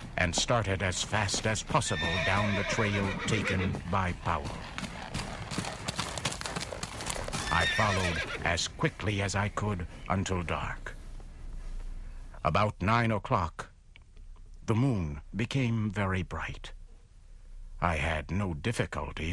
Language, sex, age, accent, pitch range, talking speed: English, male, 60-79, American, 80-105 Hz, 100 wpm